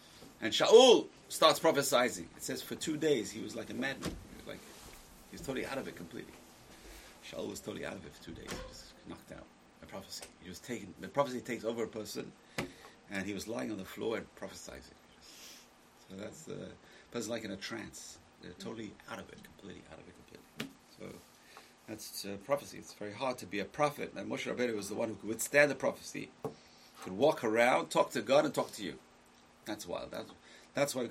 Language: English